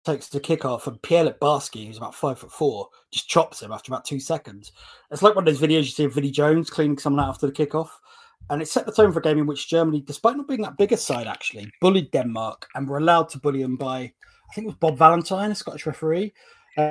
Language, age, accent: English, 30-49, British